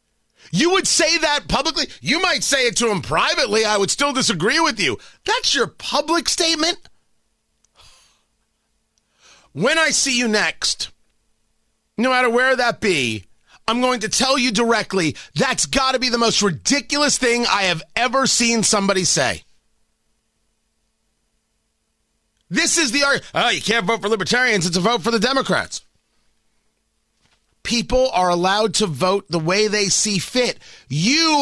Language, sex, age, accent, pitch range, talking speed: English, male, 30-49, American, 205-265 Hz, 150 wpm